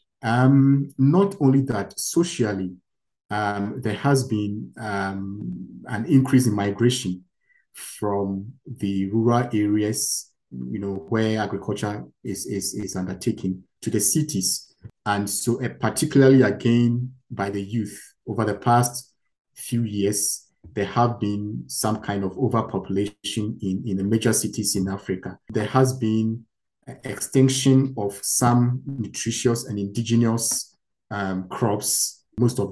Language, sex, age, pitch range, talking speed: French, male, 50-69, 95-120 Hz, 125 wpm